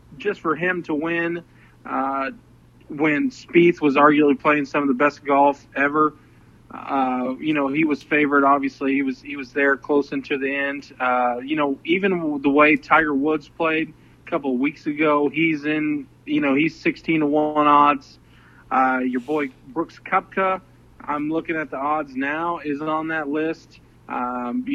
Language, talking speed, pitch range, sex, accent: English, 175 wpm, 130-155 Hz, male, American